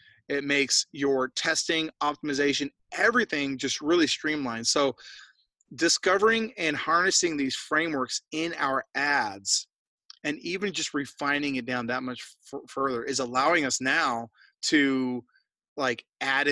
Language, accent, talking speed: English, American, 125 wpm